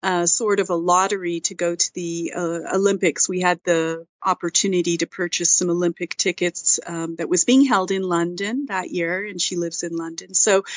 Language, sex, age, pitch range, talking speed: English, female, 40-59, 175-215 Hz, 195 wpm